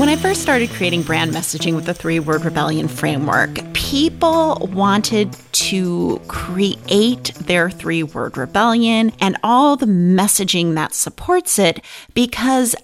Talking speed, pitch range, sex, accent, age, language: 135 wpm, 180-260 Hz, female, American, 30-49, English